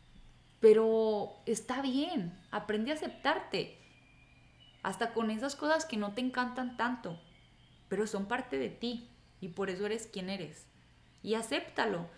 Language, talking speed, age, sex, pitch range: Spanish, 140 wpm, 20-39, female, 160-210 Hz